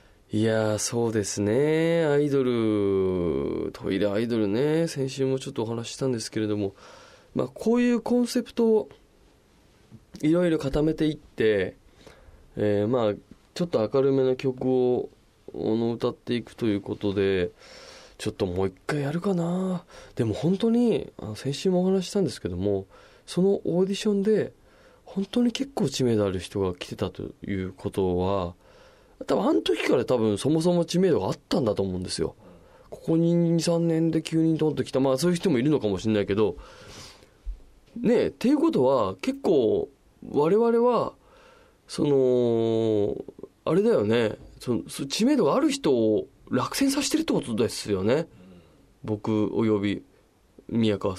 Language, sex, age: Japanese, male, 20-39